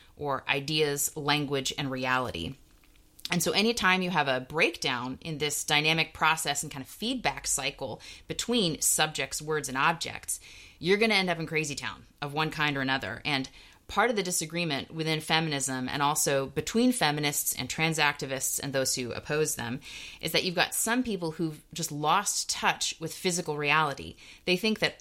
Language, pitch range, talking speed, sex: English, 140-170 Hz, 180 wpm, female